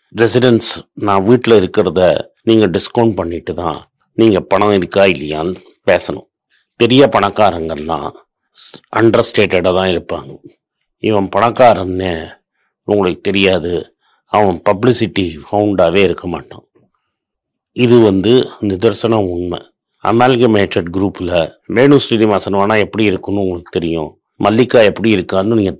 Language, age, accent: Tamil, 50-69, native